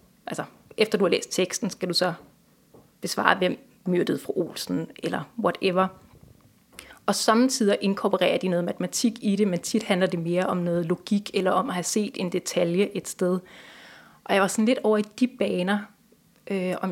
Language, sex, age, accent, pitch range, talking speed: Danish, female, 30-49, native, 185-215 Hz, 185 wpm